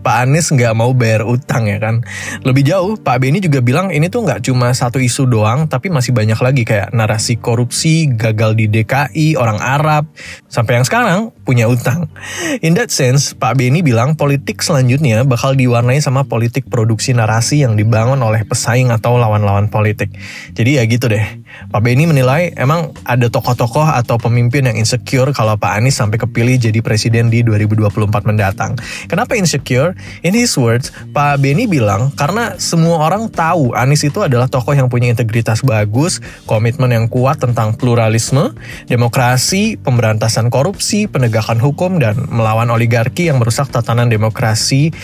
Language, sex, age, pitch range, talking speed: Indonesian, male, 20-39, 115-140 Hz, 160 wpm